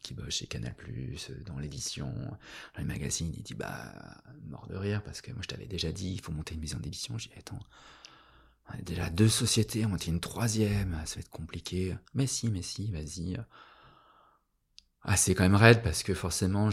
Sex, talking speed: male, 205 wpm